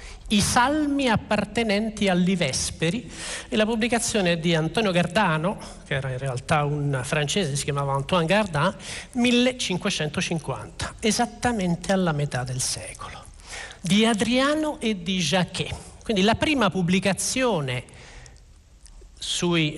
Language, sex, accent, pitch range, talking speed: Italian, male, native, 150-215 Hz, 110 wpm